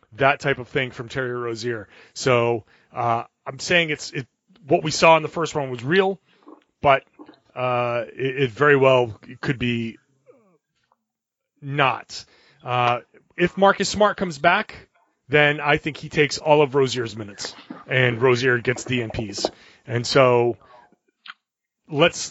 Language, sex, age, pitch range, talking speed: English, male, 30-49, 130-160 Hz, 145 wpm